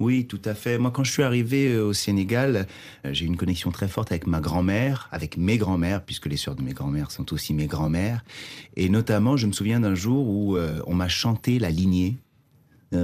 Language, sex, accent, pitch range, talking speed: French, male, French, 85-115 Hz, 230 wpm